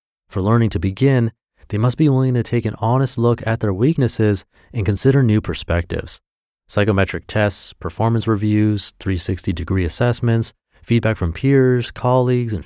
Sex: male